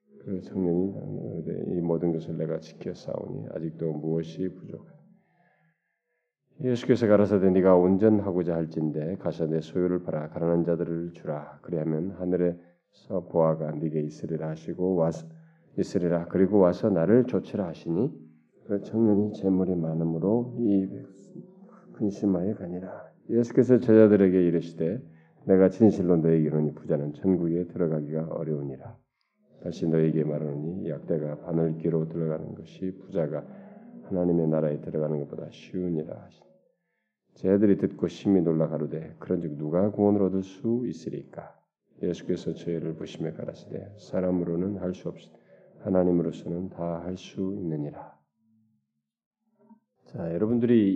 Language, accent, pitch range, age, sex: Korean, native, 80-105 Hz, 40-59, male